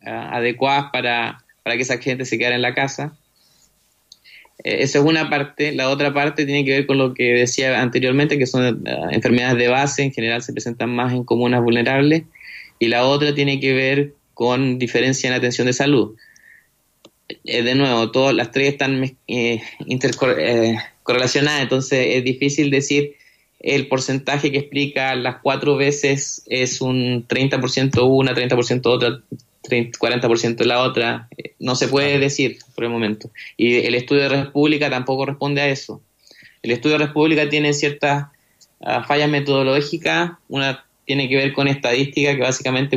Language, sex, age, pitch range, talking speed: Spanish, male, 20-39, 125-140 Hz, 165 wpm